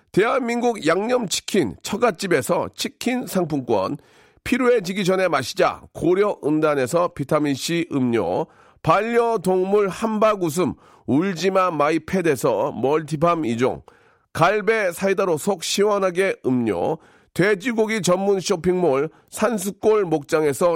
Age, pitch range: 40-59, 170-225 Hz